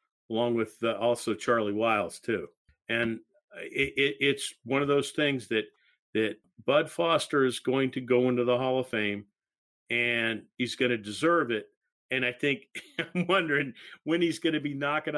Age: 50-69